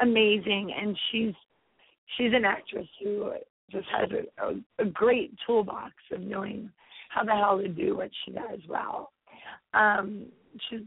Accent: American